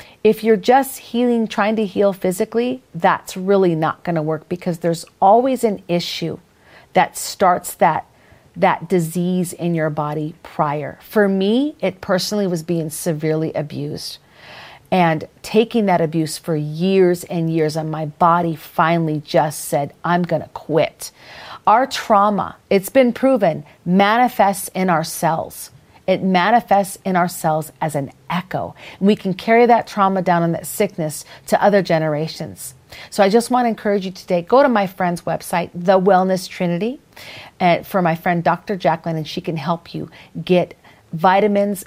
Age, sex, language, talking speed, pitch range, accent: 40-59, female, English, 160 wpm, 160-195 Hz, American